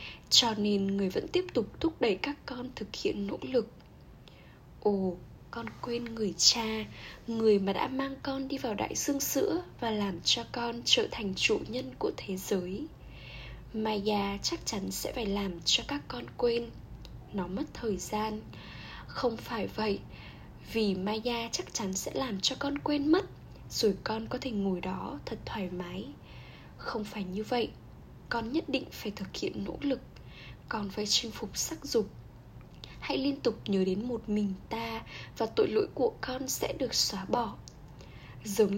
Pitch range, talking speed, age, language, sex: 200-255 Hz, 175 wpm, 10-29, Vietnamese, female